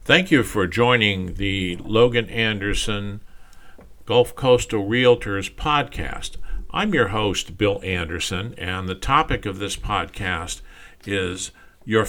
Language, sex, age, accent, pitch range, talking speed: English, male, 50-69, American, 90-110 Hz, 120 wpm